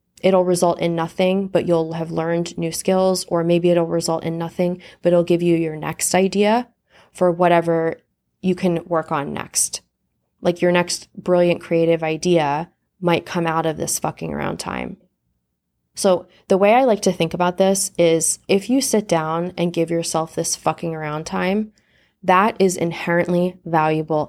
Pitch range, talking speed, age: 165-180 Hz, 170 wpm, 20-39